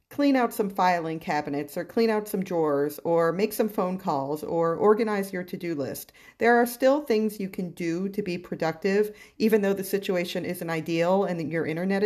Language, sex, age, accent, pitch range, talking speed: English, female, 40-59, American, 165-205 Hz, 200 wpm